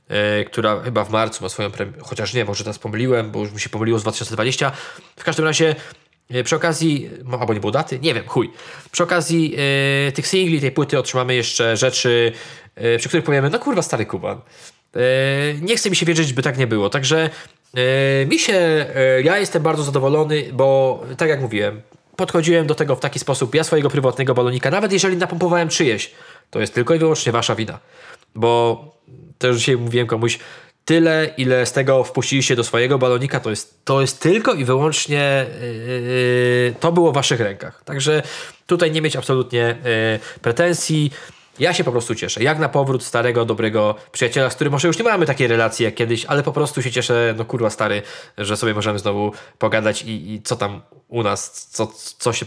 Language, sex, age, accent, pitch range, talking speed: Polish, male, 20-39, native, 115-155 Hz, 185 wpm